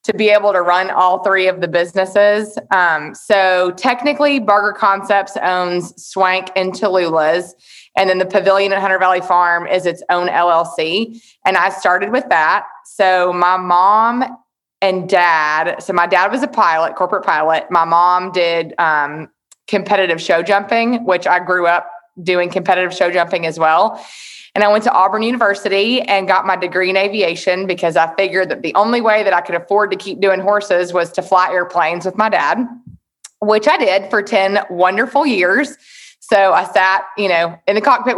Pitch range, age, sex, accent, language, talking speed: 175-205 Hz, 20-39, female, American, English, 180 wpm